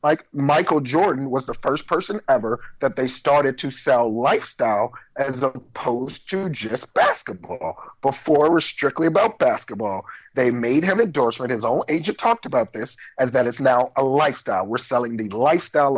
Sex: male